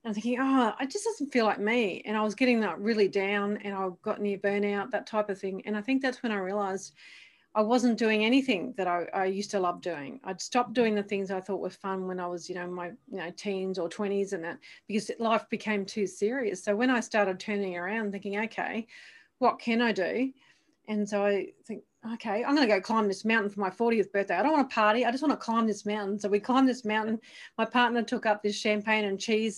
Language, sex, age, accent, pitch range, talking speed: English, female, 40-59, Australian, 200-245 Hz, 250 wpm